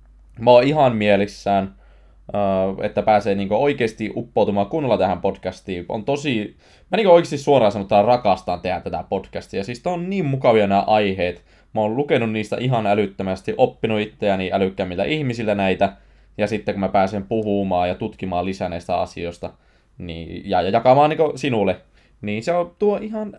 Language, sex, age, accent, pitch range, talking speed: Finnish, male, 20-39, native, 95-130 Hz, 160 wpm